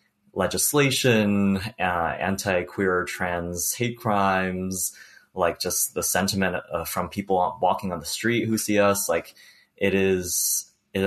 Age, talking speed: 20-39, 135 wpm